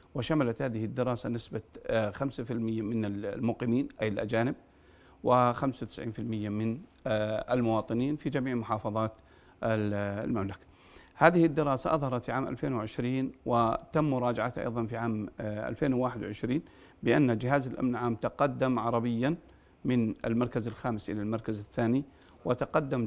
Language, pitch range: Arabic, 110-135 Hz